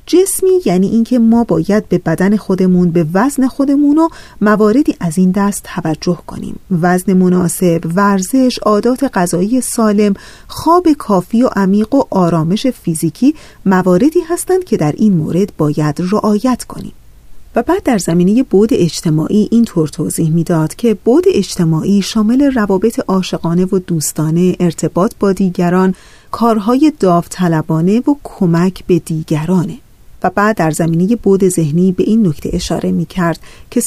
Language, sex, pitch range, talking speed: Persian, female, 180-255 Hz, 140 wpm